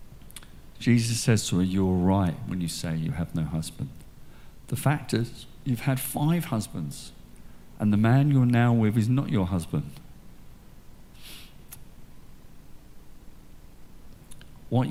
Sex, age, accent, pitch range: male, 50-69, British, 90-125 Hz